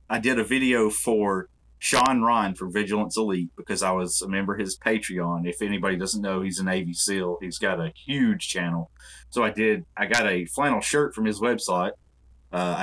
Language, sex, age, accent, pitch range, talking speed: English, male, 30-49, American, 85-110 Hz, 200 wpm